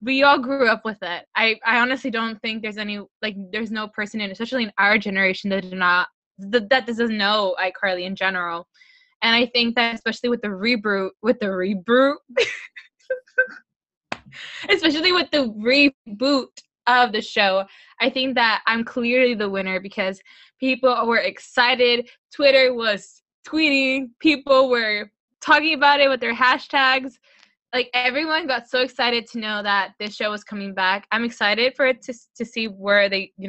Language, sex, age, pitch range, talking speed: English, female, 10-29, 205-255 Hz, 170 wpm